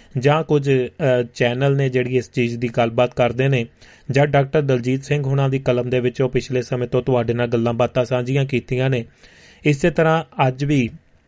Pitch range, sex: 120-140 Hz, male